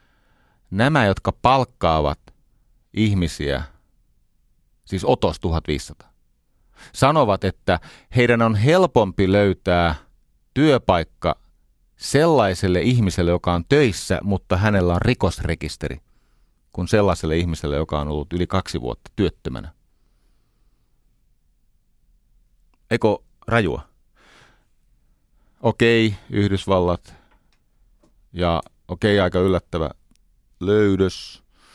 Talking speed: 85 wpm